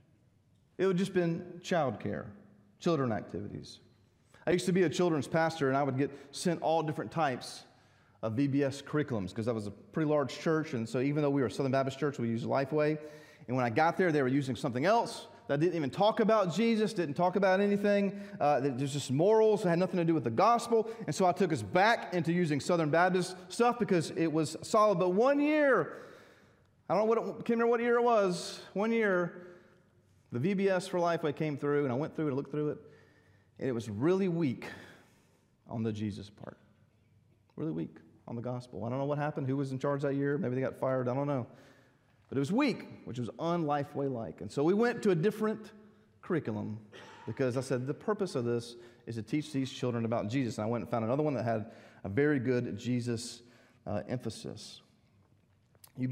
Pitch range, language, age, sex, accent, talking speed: 120-180 Hz, English, 30-49, male, American, 215 wpm